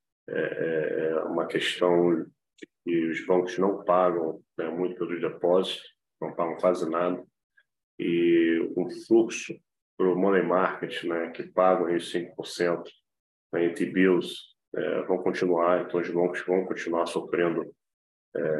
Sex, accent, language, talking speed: male, Brazilian, Portuguese, 135 wpm